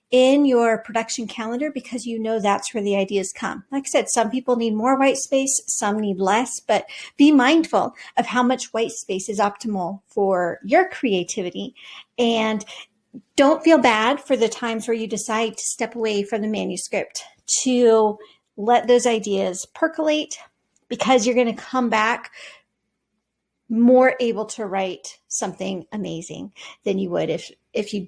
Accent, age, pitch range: American, 40-59, 210-260 Hz